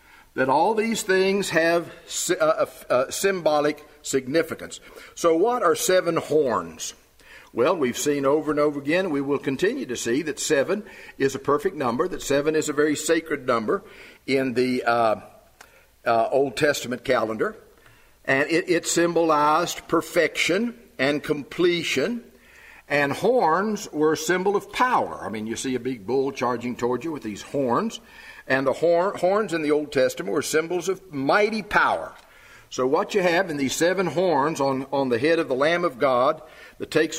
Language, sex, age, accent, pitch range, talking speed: English, male, 60-79, American, 135-170 Hz, 165 wpm